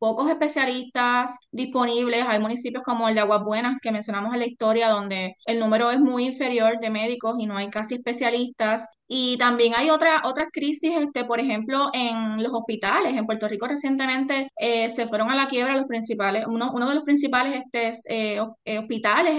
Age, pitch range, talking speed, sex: 20-39, 225-265 Hz, 170 wpm, female